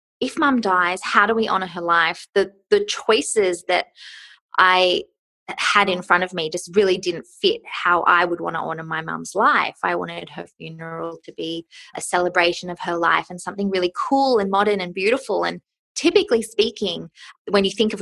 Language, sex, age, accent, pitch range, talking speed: English, female, 20-39, Australian, 175-225 Hz, 195 wpm